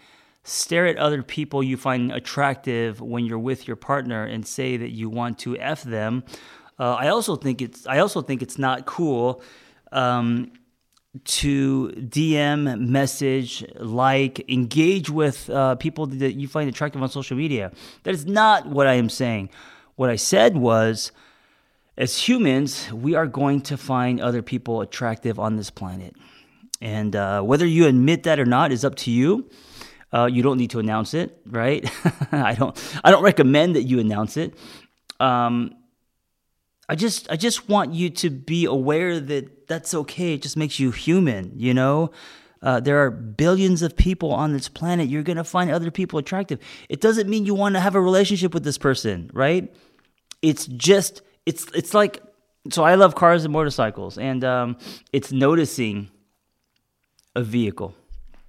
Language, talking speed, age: English, 170 wpm, 30-49